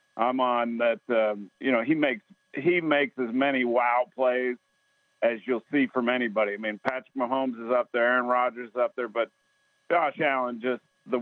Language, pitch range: English, 120-140 Hz